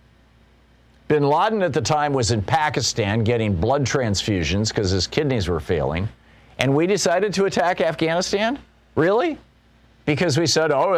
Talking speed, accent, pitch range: 150 wpm, American, 110-155 Hz